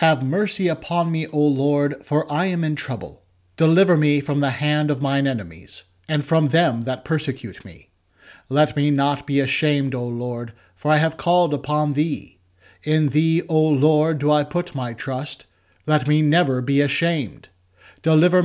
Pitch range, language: 130-155 Hz, English